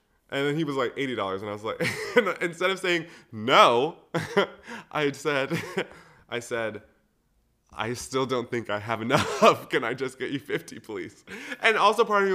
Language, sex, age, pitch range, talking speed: English, male, 20-39, 115-185 Hz, 180 wpm